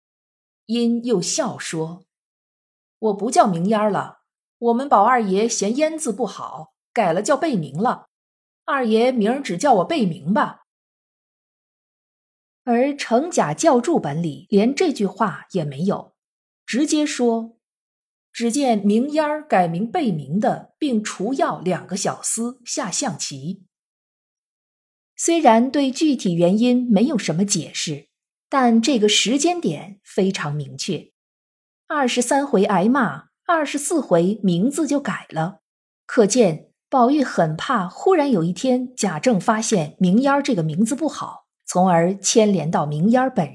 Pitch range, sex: 185-255 Hz, female